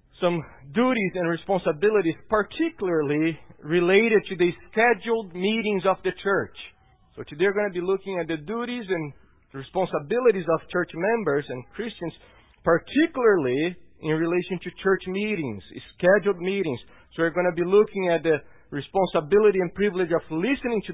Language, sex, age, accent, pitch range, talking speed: English, male, 40-59, Brazilian, 130-190 Hz, 150 wpm